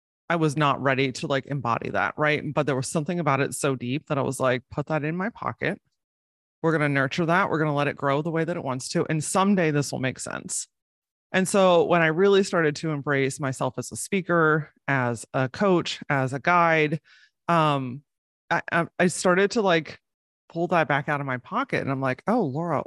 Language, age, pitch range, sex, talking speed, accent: English, 30-49, 135-165 Hz, female, 225 wpm, American